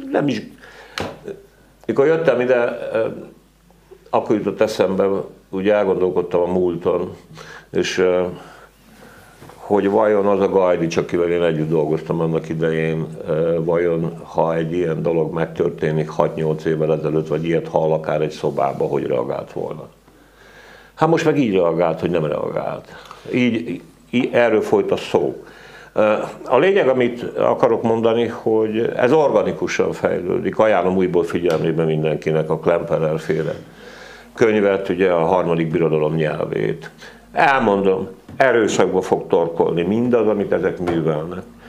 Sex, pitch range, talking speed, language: male, 80-110 Hz, 125 wpm, Hungarian